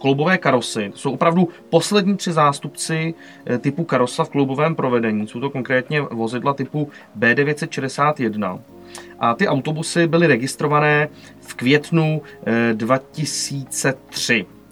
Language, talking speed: Czech, 110 wpm